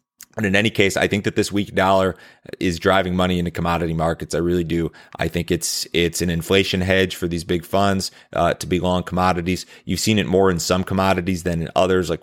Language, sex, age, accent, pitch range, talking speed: English, male, 30-49, American, 85-100 Hz, 225 wpm